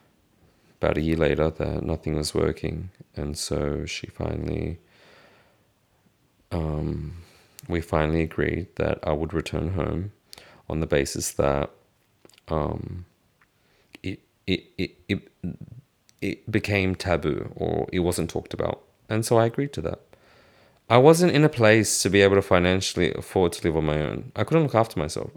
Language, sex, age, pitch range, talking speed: English, male, 30-49, 80-110 Hz, 145 wpm